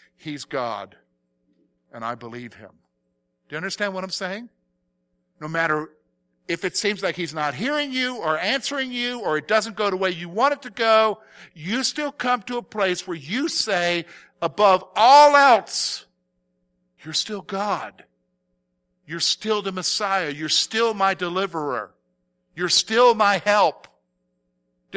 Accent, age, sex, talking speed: American, 50-69, male, 155 wpm